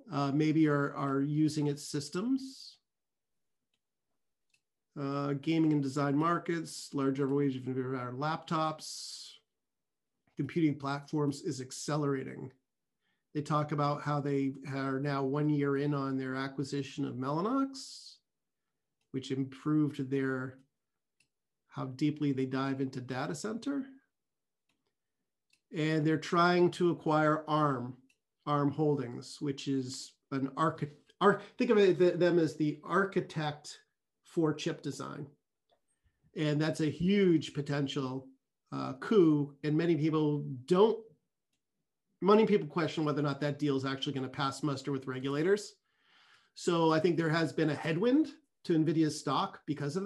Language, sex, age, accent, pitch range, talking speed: English, male, 50-69, American, 140-165 Hz, 130 wpm